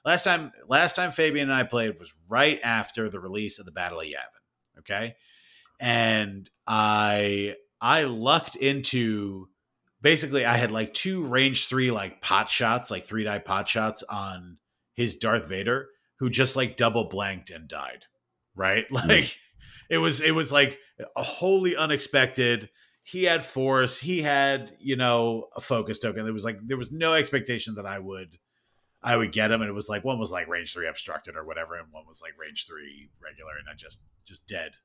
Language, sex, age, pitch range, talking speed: English, male, 30-49, 105-135 Hz, 185 wpm